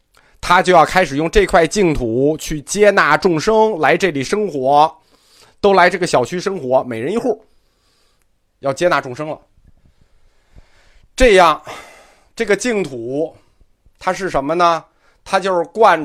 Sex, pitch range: male, 125-185 Hz